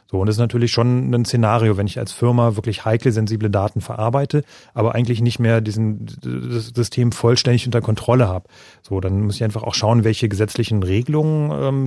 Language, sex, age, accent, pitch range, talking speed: German, male, 30-49, German, 105-125 Hz, 190 wpm